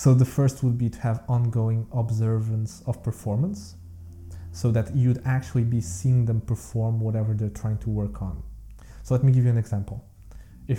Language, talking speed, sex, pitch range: English, 185 wpm, male, 105-130 Hz